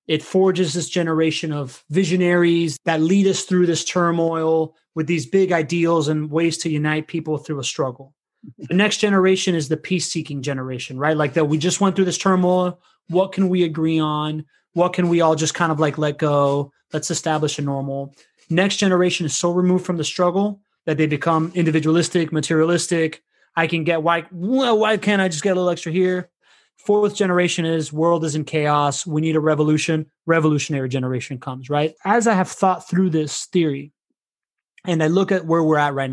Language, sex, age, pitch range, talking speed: English, male, 30-49, 155-185 Hz, 190 wpm